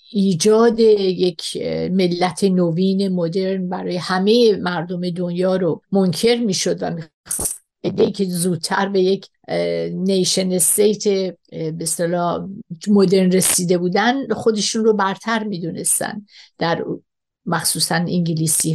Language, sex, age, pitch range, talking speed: Persian, female, 50-69, 180-215 Hz, 100 wpm